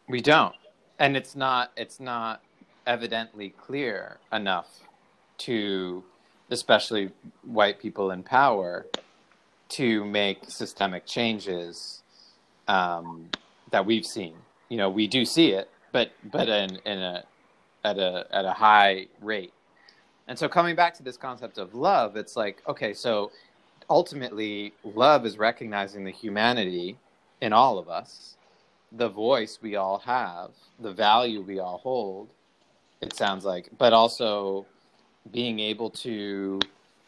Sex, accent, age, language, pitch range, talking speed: male, American, 30-49, English, 100-120 Hz, 135 wpm